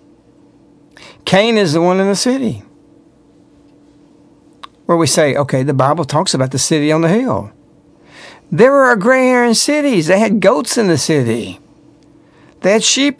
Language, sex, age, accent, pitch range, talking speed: English, male, 60-79, American, 150-220 Hz, 150 wpm